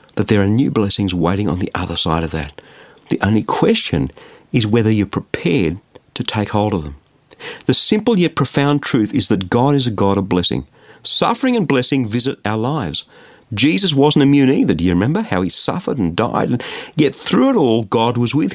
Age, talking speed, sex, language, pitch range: 50-69, 205 wpm, male, English, 95-140 Hz